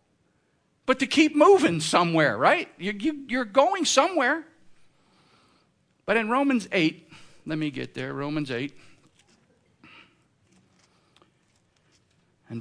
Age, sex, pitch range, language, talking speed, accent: 50-69, male, 140-180 Hz, English, 95 wpm, American